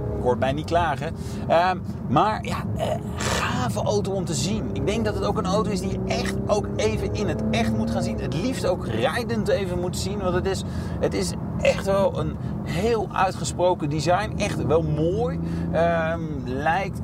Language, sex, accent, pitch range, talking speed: Dutch, male, Dutch, 110-150 Hz, 195 wpm